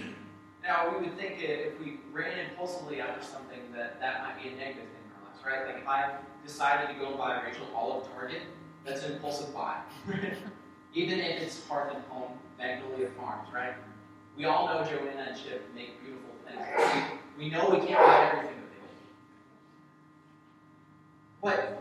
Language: English